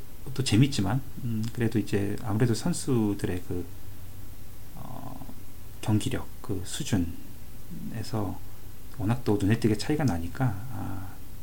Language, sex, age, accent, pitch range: Korean, male, 40-59, native, 100-120 Hz